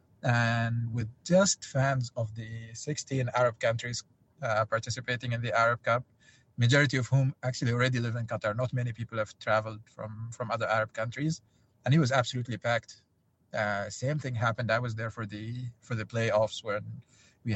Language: English